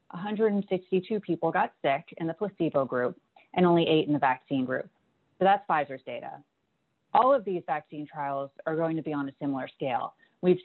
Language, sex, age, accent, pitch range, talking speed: English, female, 30-49, American, 150-200 Hz, 185 wpm